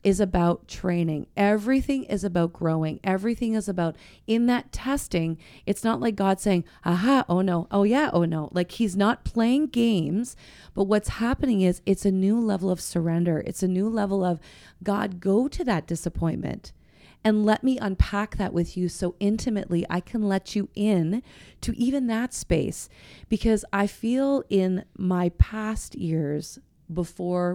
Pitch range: 170-215 Hz